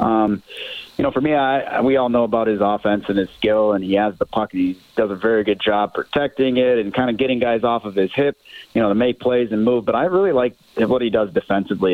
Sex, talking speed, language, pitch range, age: male, 260 wpm, English, 105-115 Hz, 30-49